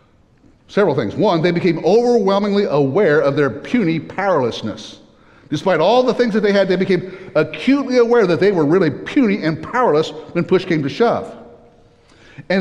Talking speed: 165 wpm